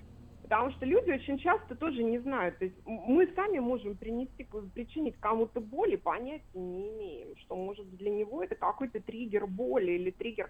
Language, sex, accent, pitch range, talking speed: Russian, female, native, 190-275 Hz, 170 wpm